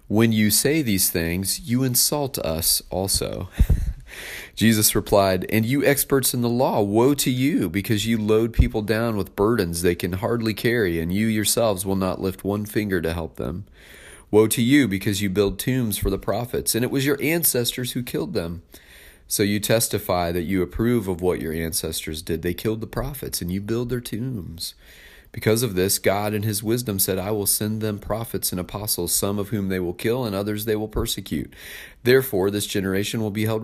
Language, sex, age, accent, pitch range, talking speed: English, male, 40-59, American, 90-115 Hz, 200 wpm